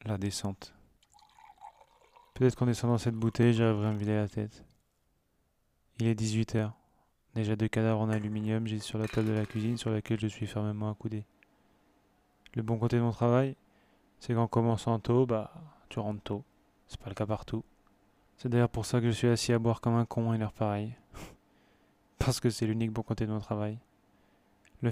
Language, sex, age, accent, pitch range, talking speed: French, male, 20-39, French, 105-120 Hz, 190 wpm